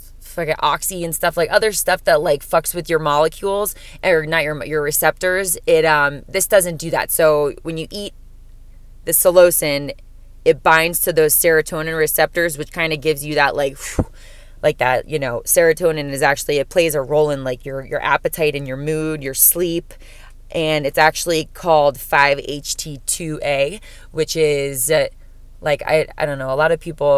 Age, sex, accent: 20-39, female, American